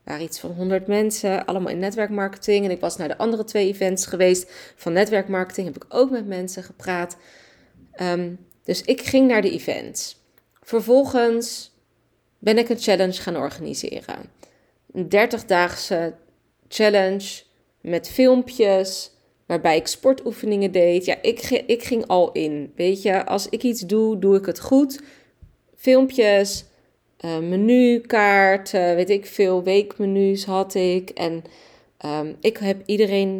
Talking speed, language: 140 wpm, Dutch